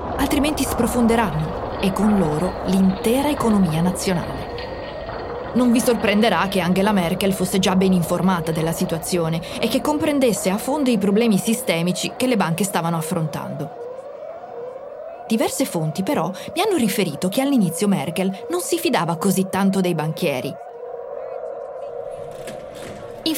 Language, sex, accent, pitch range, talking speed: Italian, female, native, 175-245 Hz, 130 wpm